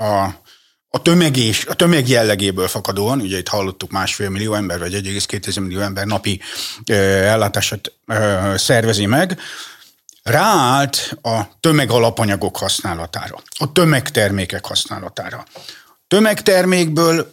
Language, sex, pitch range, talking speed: Hungarian, male, 105-150 Hz, 110 wpm